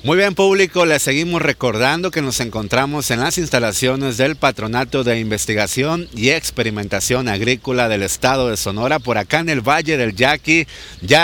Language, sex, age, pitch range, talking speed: Spanish, male, 50-69, 115-135 Hz, 165 wpm